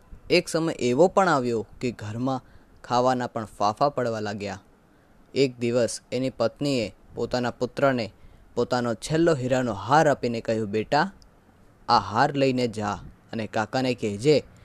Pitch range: 115-140 Hz